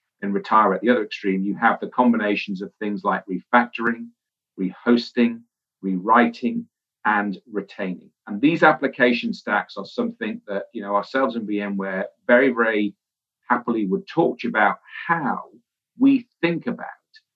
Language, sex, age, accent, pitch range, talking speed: English, male, 40-59, British, 105-145 Hz, 145 wpm